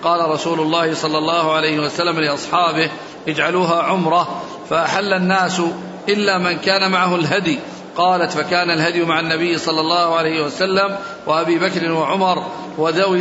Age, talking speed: 50-69, 135 wpm